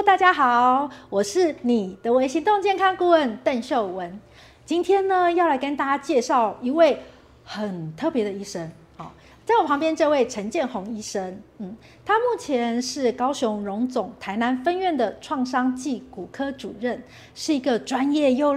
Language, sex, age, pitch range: Chinese, female, 40-59, 230-320 Hz